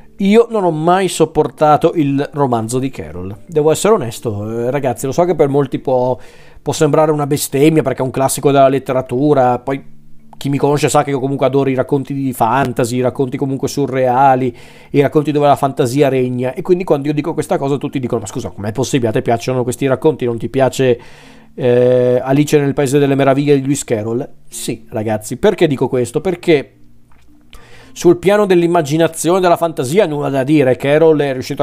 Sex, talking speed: male, 190 wpm